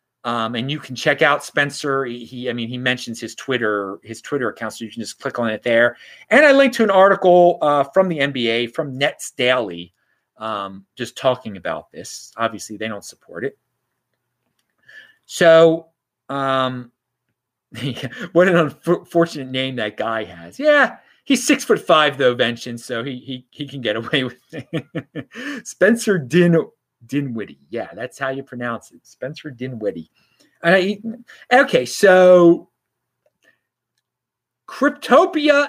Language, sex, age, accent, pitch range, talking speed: English, male, 30-49, American, 120-185 Hz, 150 wpm